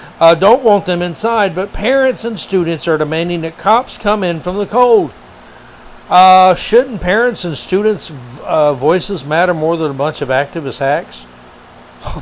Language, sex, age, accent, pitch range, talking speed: English, male, 60-79, American, 130-185 Hz, 165 wpm